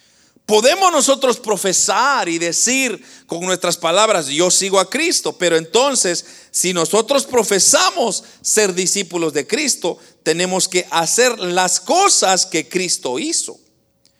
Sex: male